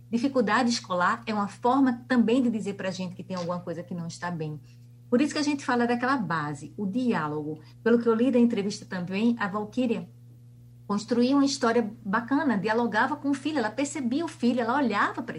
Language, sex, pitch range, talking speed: Portuguese, female, 170-250 Hz, 205 wpm